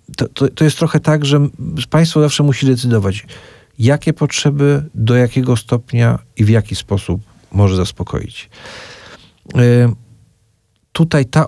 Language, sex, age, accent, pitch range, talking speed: Polish, male, 50-69, native, 110-130 Hz, 125 wpm